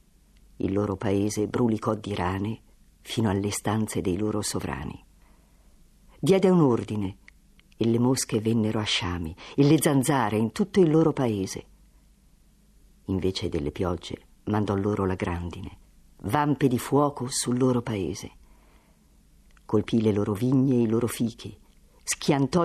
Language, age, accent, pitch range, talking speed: Italian, 50-69, native, 100-135 Hz, 135 wpm